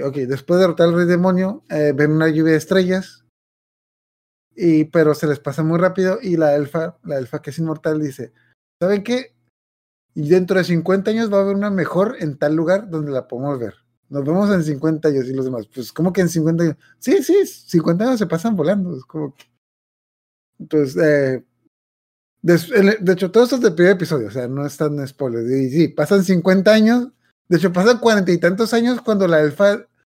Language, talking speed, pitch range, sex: Spanish, 205 wpm, 145-190 Hz, male